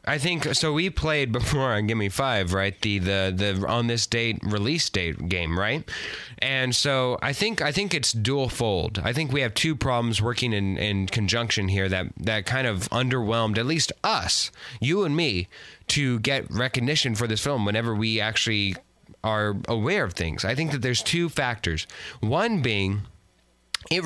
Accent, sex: American, male